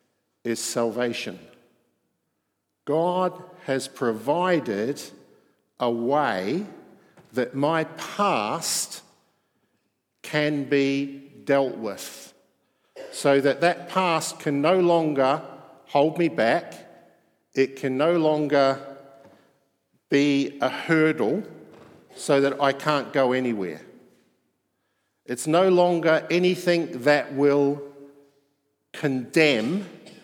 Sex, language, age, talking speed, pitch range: male, English, 50-69, 85 wpm, 130-160 Hz